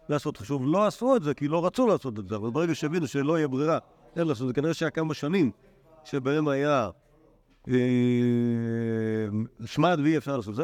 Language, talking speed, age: Hebrew, 180 wpm, 50-69